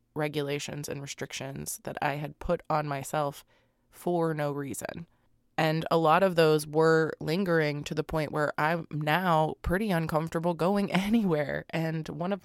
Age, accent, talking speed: 20-39, American, 155 wpm